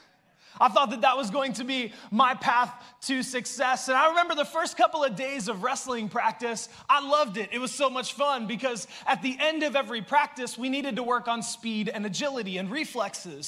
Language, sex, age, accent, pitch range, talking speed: English, male, 20-39, American, 205-260 Hz, 215 wpm